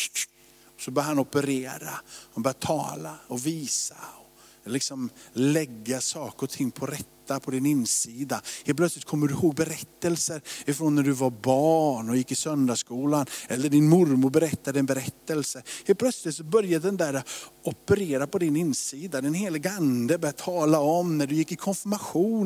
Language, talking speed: Swedish, 160 wpm